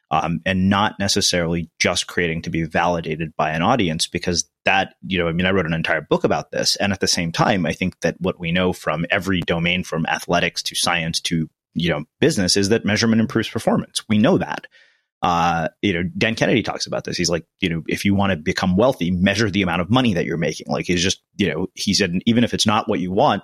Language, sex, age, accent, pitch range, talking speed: English, male, 30-49, American, 85-105 Hz, 245 wpm